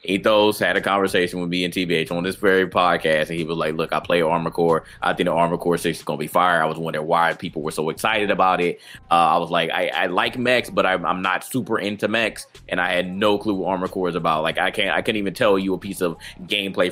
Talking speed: 270 wpm